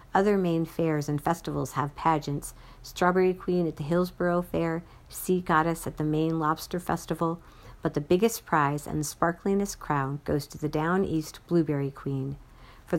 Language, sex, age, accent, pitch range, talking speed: English, female, 50-69, American, 145-175 Hz, 165 wpm